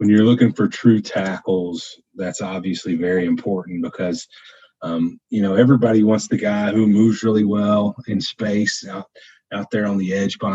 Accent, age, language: American, 40-59, English